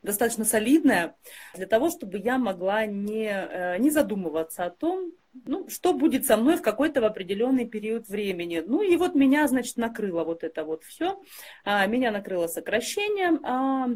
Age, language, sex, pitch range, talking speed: 30-49, Russian, female, 190-265 Hz, 155 wpm